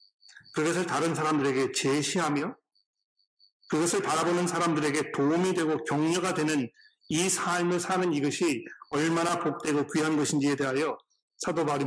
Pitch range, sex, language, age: 145-180 Hz, male, Korean, 40-59